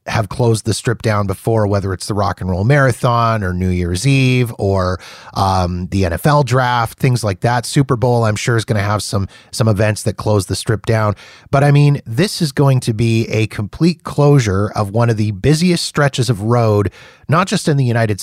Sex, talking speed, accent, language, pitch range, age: male, 215 wpm, American, English, 110-145 Hz, 30-49